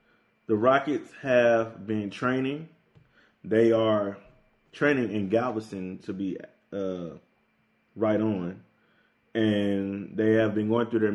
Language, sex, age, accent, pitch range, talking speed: English, male, 20-39, American, 100-115 Hz, 120 wpm